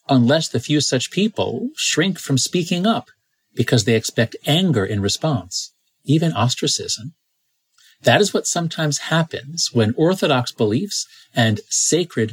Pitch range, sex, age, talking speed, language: 120-165 Hz, male, 50-69, 130 wpm, English